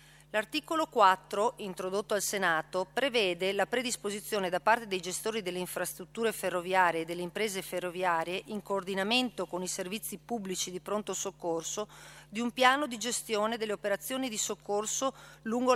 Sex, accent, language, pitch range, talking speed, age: female, native, Italian, 185-225 Hz, 145 wpm, 40-59